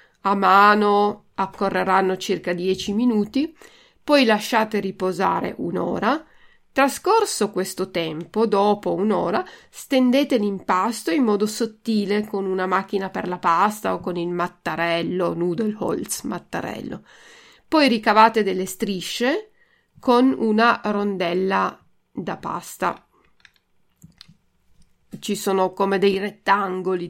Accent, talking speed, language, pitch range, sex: native, 105 wpm, Italian, 190-245 Hz, female